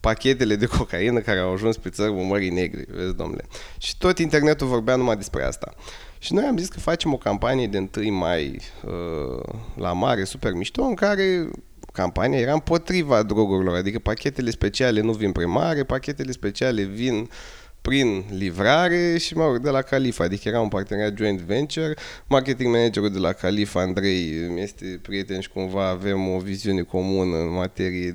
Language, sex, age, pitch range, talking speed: Romanian, male, 20-39, 95-135 Hz, 170 wpm